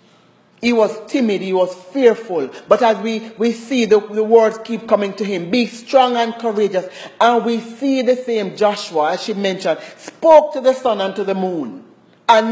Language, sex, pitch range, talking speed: English, male, 185-240 Hz, 190 wpm